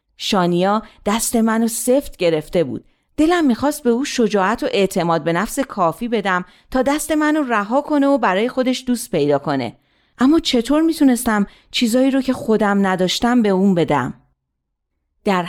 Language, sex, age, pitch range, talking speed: Persian, female, 40-59, 185-265 Hz, 155 wpm